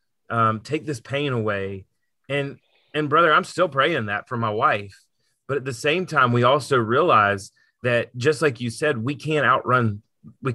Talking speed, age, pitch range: 180 wpm, 30-49, 125-155 Hz